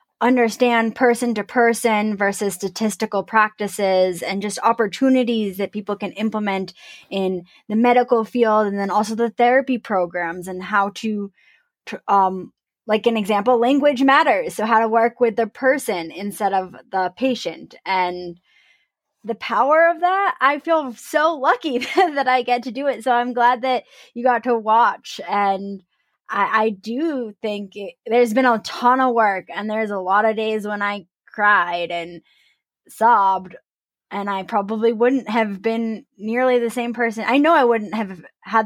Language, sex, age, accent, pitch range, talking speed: English, female, 20-39, American, 200-255 Hz, 165 wpm